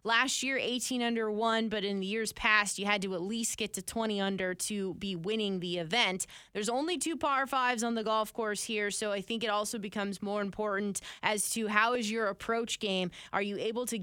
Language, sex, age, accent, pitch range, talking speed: English, female, 20-39, American, 200-230 Hz, 225 wpm